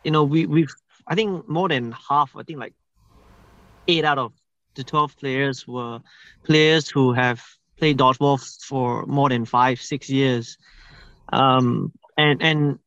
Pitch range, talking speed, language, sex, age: 130-155 Hz, 155 wpm, English, male, 20-39